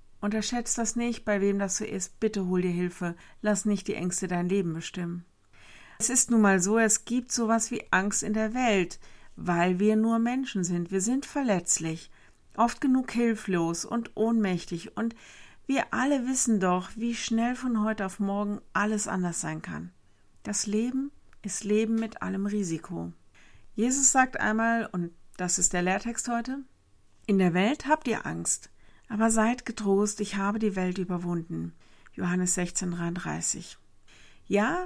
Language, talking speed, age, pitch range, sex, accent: German, 160 wpm, 50-69, 180-230 Hz, female, German